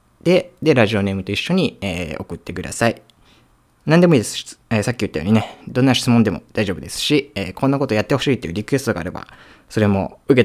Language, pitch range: Japanese, 90-140 Hz